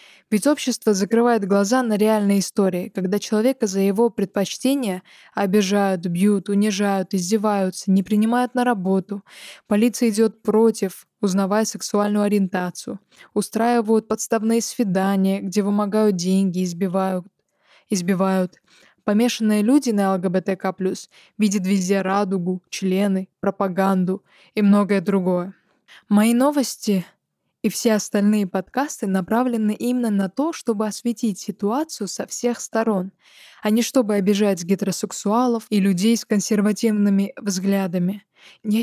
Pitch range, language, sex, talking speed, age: 195-220 Hz, Russian, female, 115 wpm, 20-39